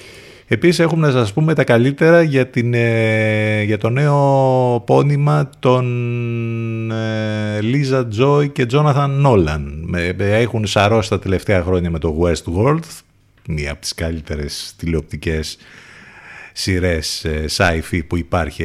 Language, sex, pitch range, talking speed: Greek, male, 90-120 Hz, 115 wpm